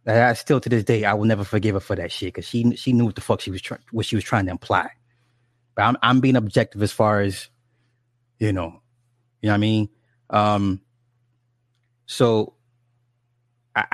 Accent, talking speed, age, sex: American, 200 wpm, 20-39, male